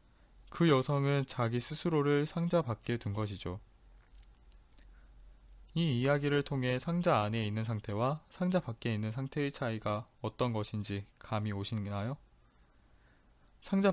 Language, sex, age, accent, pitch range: Korean, male, 20-39, native, 105-140 Hz